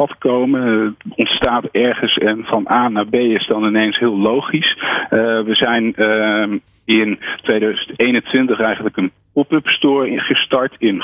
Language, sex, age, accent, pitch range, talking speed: Dutch, male, 50-69, Dutch, 105-125 Hz, 140 wpm